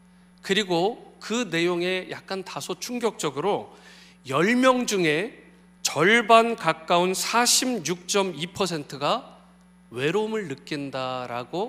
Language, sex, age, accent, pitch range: Korean, male, 40-59, native, 165-190 Hz